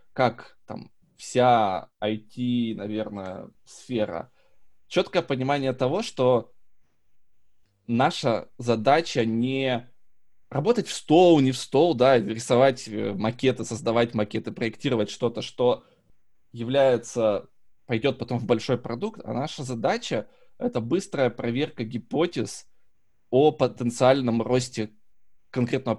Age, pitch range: 20-39, 110-130 Hz